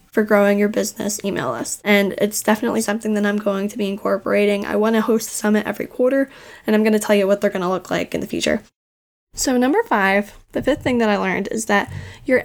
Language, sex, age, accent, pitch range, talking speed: English, female, 10-29, American, 205-245 Hz, 230 wpm